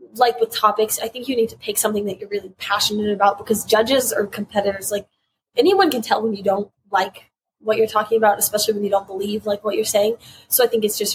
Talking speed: 240 wpm